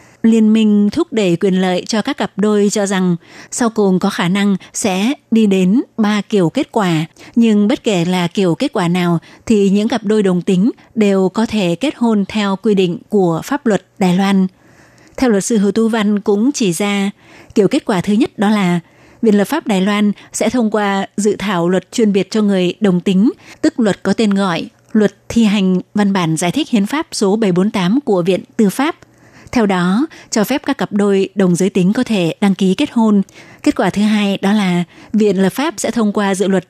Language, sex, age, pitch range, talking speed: Vietnamese, female, 20-39, 190-225 Hz, 220 wpm